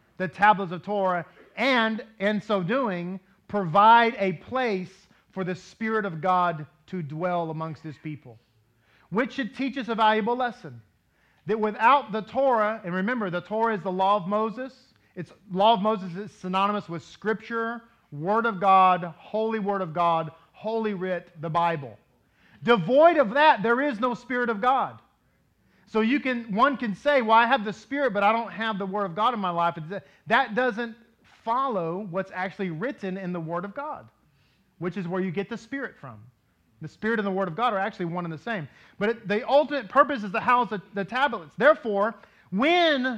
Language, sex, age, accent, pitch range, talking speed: English, male, 40-59, American, 180-235 Hz, 190 wpm